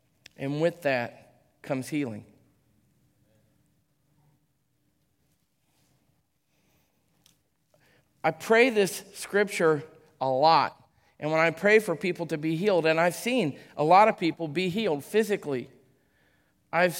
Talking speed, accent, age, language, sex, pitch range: 110 wpm, American, 40-59, English, male, 155-195 Hz